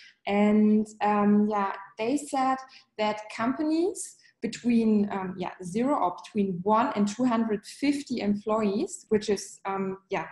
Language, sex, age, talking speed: English, female, 20-39, 120 wpm